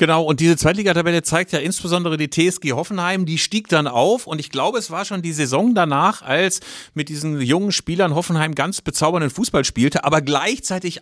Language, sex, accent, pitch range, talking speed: German, male, German, 135-175 Hz, 190 wpm